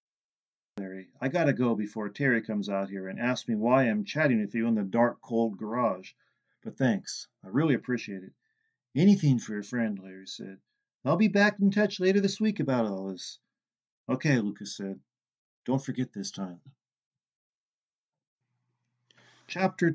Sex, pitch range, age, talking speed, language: male, 100-145 Hz, 40-59, 160 wpm, English